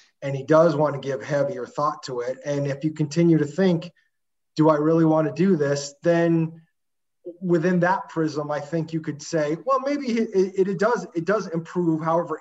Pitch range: 150-180 Hz